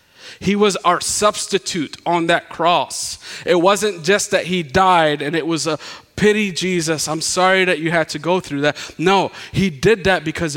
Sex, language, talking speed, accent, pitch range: male, English, 185 wpm, American, 165-210 Hz